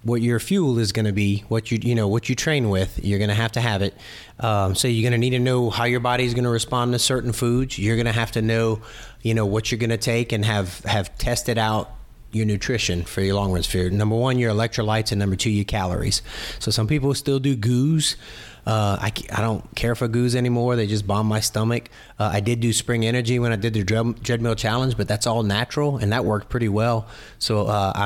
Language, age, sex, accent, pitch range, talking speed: English, 30-49, male, American, 105-120 Hz, 250 wpm